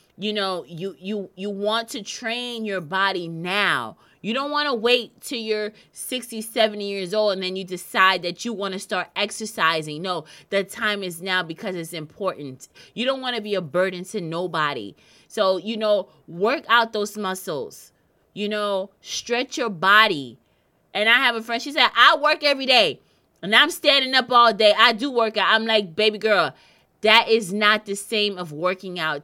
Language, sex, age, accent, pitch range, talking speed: English, female, 20-39, American, 190-230 Hz, 195 wpm